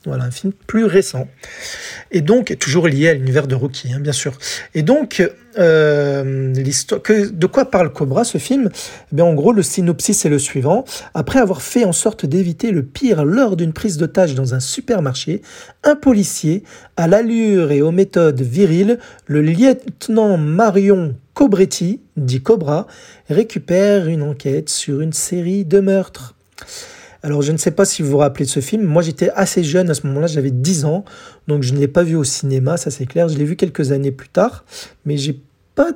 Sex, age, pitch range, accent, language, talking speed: male, 40-59, 145-200 Hz, French, French, 195 wpm